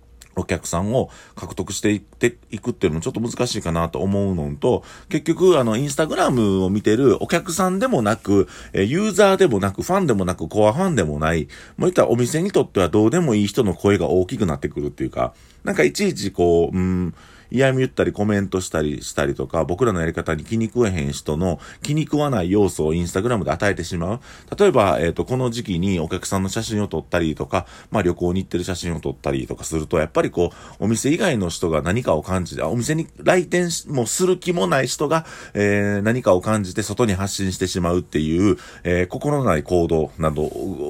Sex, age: male, 40-59